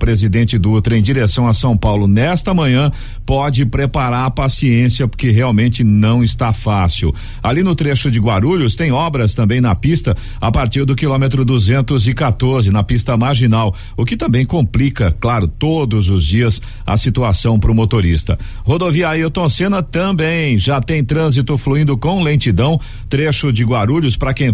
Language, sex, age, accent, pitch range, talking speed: Portuguese, male, 50-69, Brazilian, 115-150 Hz, 155 wpm